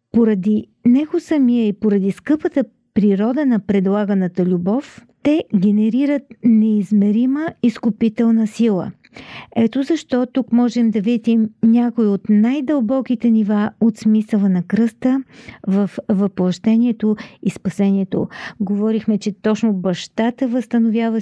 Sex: female